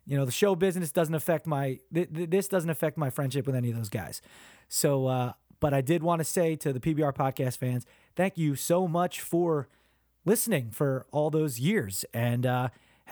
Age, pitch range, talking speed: 30-49, 135-190 Hz, 190 wpm